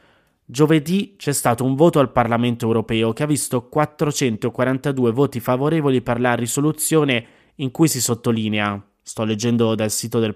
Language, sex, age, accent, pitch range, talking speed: Italian, male, 20-39, native, 115-150 Hz, 150 wpm